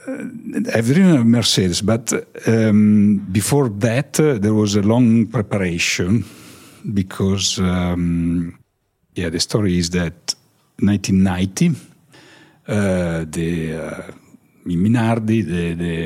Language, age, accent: English, 60-79, Italian